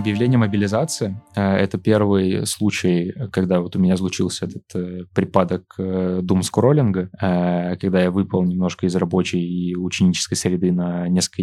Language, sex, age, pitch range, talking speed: Russian, male, 20-39, 90-105 Hz, 135 wpm